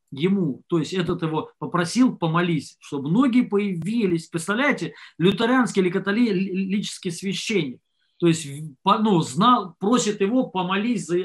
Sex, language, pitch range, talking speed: male, Russian, 145-195 Hz, 115 wpm